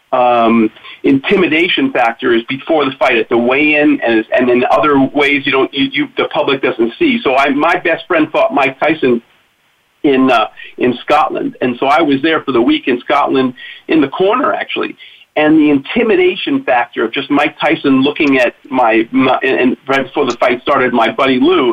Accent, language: American, English